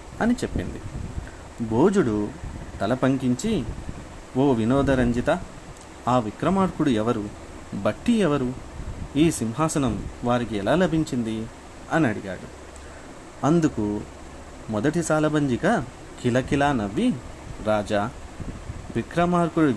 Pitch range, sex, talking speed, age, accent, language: 100-140 Hz, male, 75 wpm, 30-49, native, Telugu